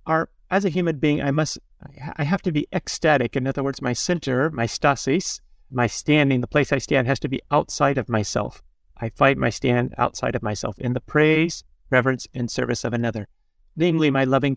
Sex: male